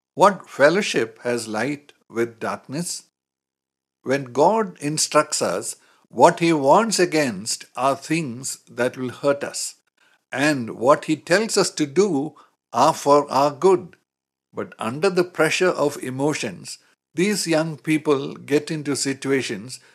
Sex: male